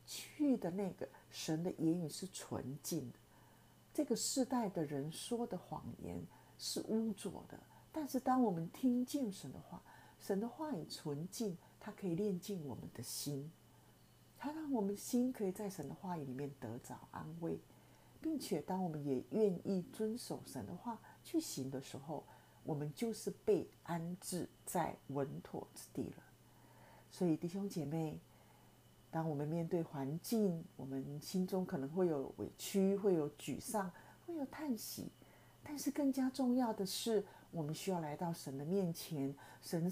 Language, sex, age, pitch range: Chinese, female, 50-69, 150-225 Hz